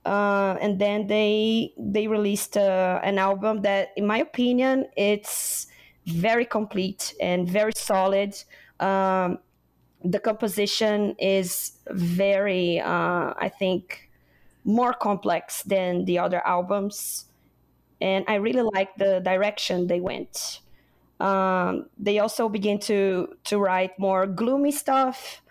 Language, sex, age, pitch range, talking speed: English, female, 20-39, 190-215 Hz, 120 wpm